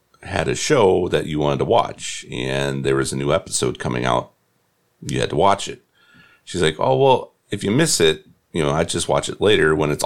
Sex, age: male, 40-59